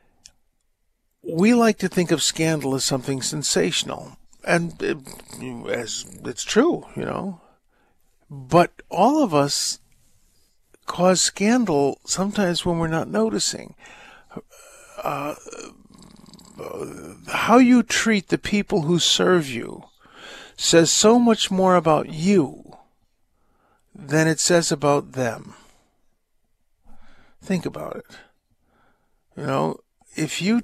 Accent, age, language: American, 50-69, English